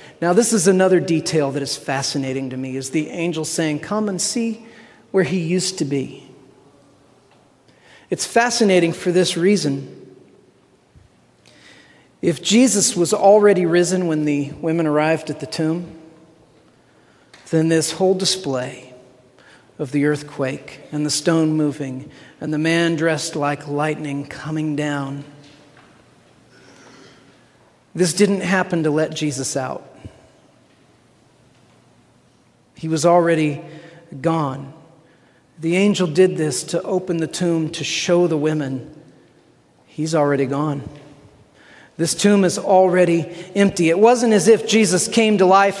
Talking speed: 125 wpm